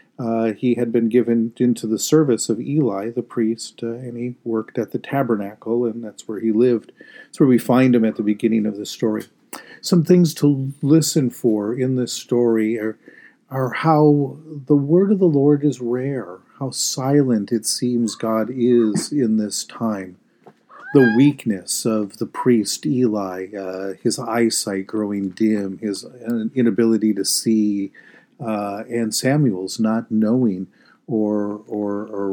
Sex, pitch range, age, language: male, 105-130 Hz, 40-59, English